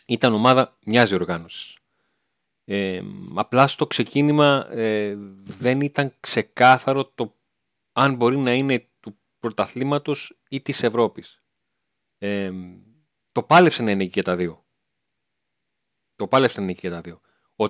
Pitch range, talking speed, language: 110-135 Hz, 130 wpm, Greek